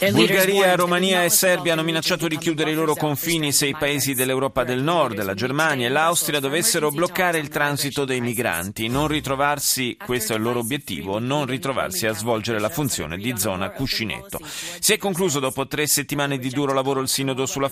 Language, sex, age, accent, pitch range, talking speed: Italian, male, 30-49, native, 115-150 Hz, 185 wpm